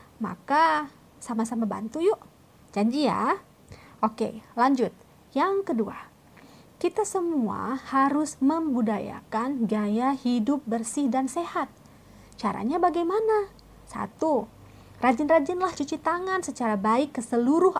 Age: 30-49